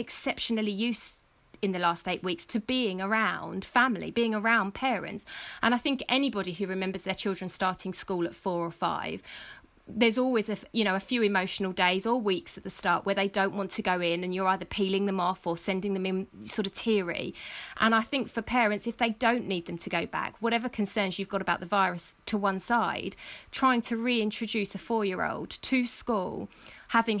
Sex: female